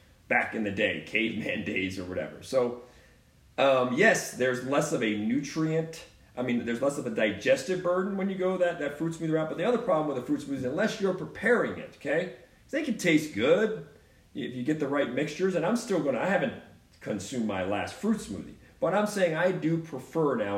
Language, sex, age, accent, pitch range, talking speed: English, male, 40-59, American, 110-155 Hz, 215 wpm